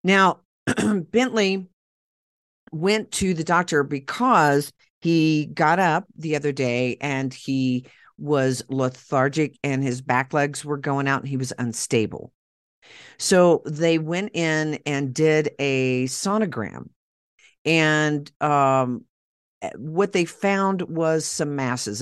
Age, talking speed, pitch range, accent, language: 50-69, 120 wpm, 125-155 Hz, American, English